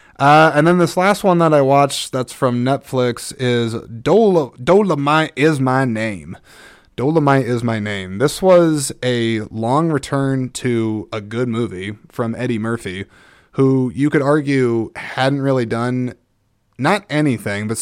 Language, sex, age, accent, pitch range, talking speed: English, male, 20-39, American, 110-135 Hz, 145 wpm